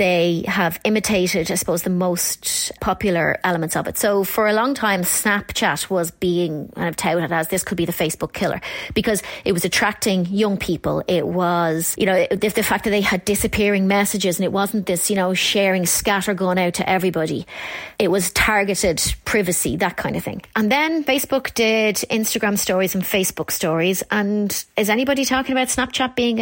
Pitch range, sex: 185-225 Hz, female